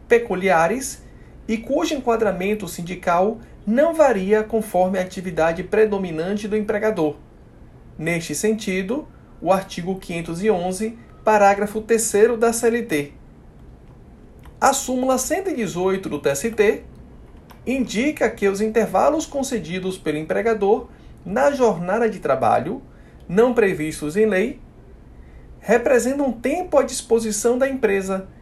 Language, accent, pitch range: Portuguese, Brazilian, 185-235 Hz